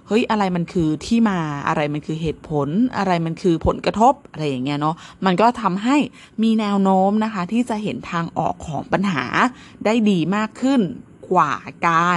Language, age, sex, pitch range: Thai, 20-39, female, 165-220 Hz